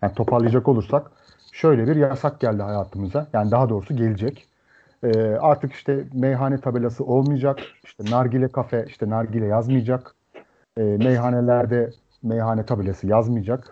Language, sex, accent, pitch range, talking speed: Turkish, male, native, 110-140 Hz, 125 wpm